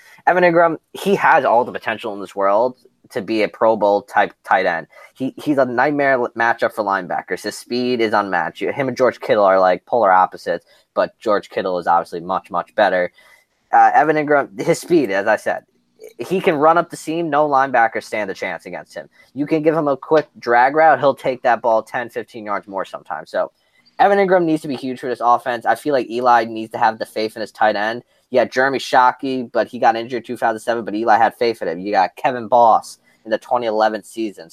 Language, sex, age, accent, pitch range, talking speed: English, male, 20-39, American, 115-150 Hz, 225 wpm